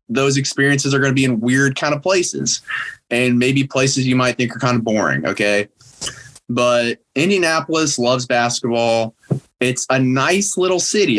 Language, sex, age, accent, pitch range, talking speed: English, male, 20-39, American, 120-160 Hz, 165 wpm